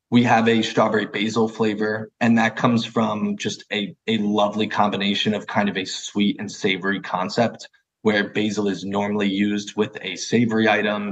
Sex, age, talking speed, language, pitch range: male, 20-39, 175 wpm, English, 100-115 Hz